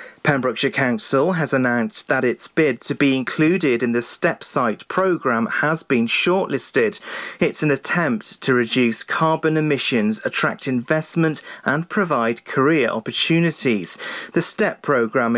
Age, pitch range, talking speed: 40-59, 125-170 Hz, 135 wpm